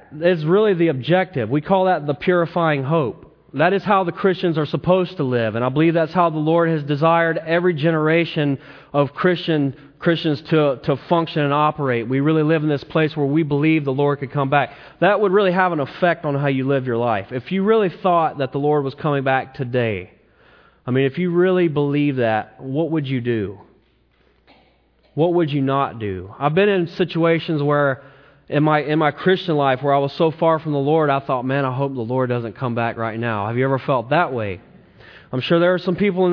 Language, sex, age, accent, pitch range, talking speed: English, male, 30-49, American, 130-165 Hz, 225 wpm